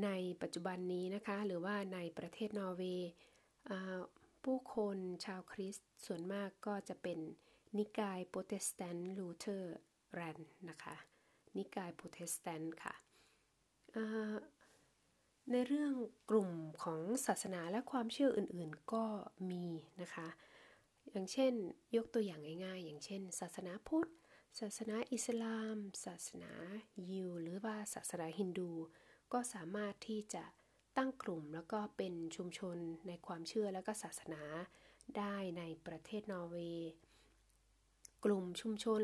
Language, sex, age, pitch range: Thai, female, 20-39, 170-215 Hz